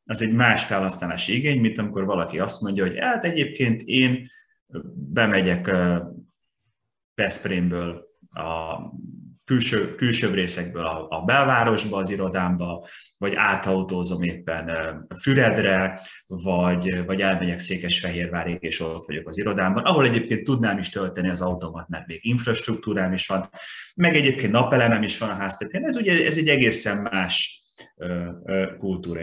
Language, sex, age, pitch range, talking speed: Hungarian, male, 30-49, 90-120 Hz, 125 wpm